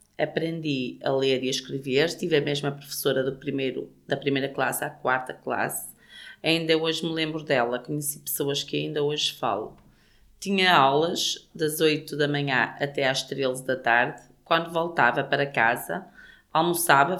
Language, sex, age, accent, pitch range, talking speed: French, female, 30-49, Brazilian, 140-180 Hz, 155 wpm